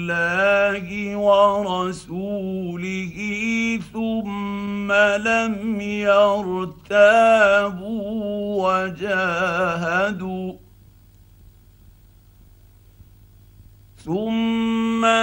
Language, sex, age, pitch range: Arabic, male, 50-69, 170-220 Hz